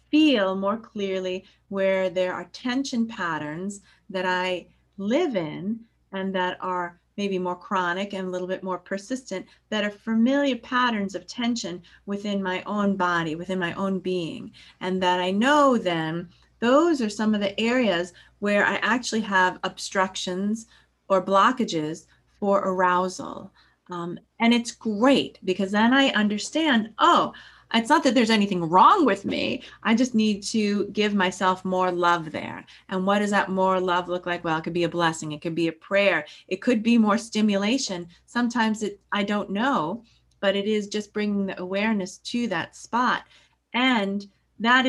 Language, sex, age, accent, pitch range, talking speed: English, female, 30-49, American, 185-225 Hz, 165 wpm